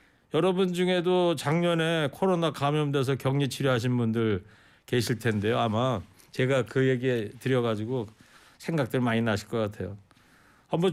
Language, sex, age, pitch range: Korean, male, 40-59, 110-145 Hz